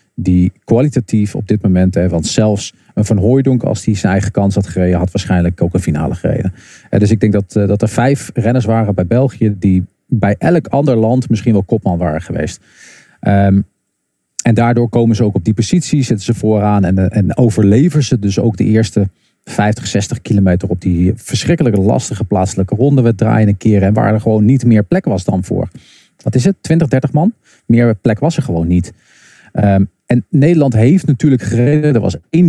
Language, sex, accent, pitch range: Dutch, male, Dutch, 100-120 Hz